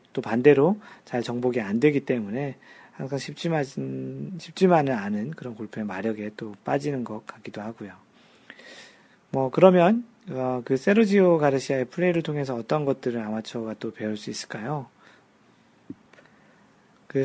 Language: Korean